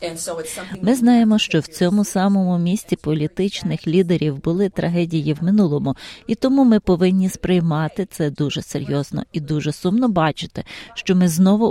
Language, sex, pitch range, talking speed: Ukrainian, female, 160-205 Hz, 145 wpm